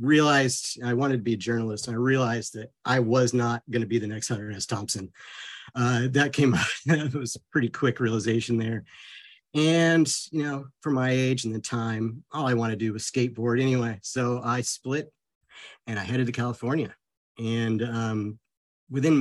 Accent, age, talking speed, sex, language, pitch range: American, 50-69, 190 wpm, male, English, 110-130 Hz